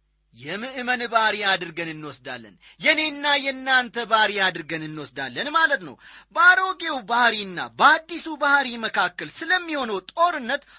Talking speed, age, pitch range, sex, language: 100 wpm, 30-49, 190-280 Hz, male, Amharic